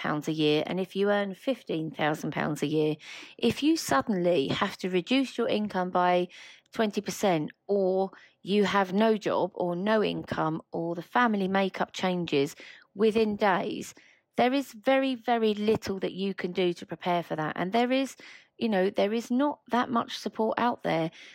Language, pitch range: English, 185-240 Hz